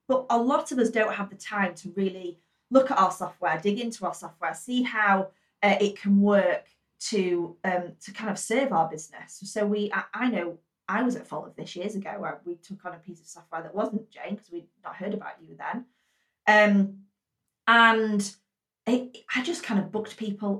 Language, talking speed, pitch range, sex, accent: English, 210 wpm, 175-215 Hz, female, British